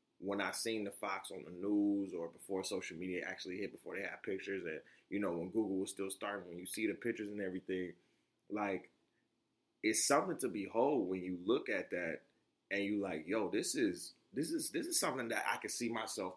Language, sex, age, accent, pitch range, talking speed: English, male, 20-39, American, 100-125 Hz, 215 wpm